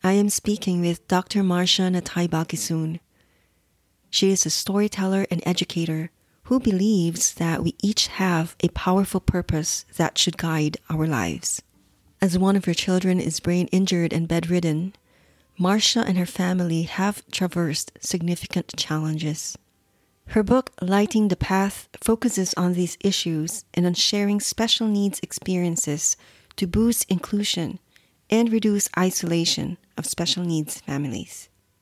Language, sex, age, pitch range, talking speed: English, female, 30-49, 165-195 Hz, 135 wpm